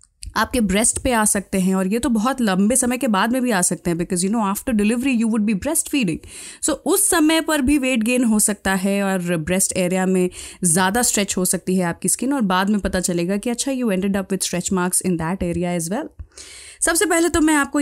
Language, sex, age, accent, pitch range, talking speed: Hindi, female, 20-39, native, 185-260 Hz, 245 wpm